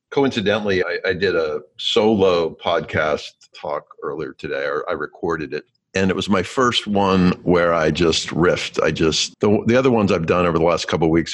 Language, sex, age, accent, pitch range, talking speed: English, male, 50-69, American, 85-135 Hz, 200 wpm